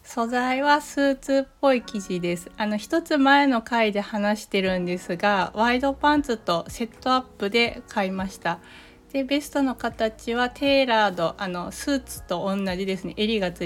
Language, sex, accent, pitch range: Japanese, female, native, 195-245 Hz